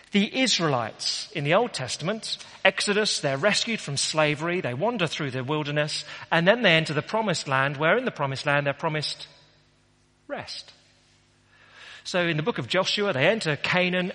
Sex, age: male, 40-59